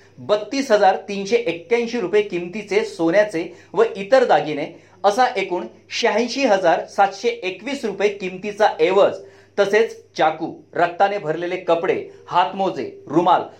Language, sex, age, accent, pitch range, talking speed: Marathi, male, 40-59, native, 175-250 Hz, 115 wpm